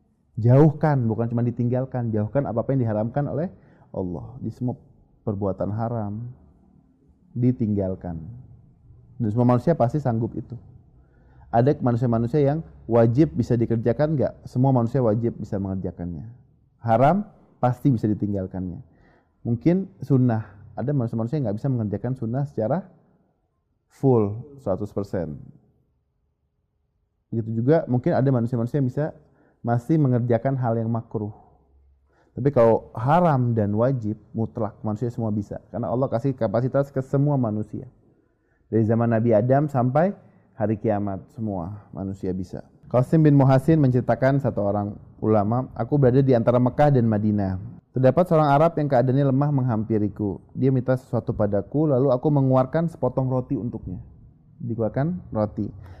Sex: male